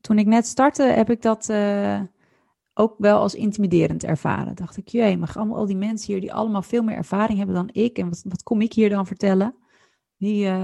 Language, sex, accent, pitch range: Dutch, female, Dutch, 180-210 Hz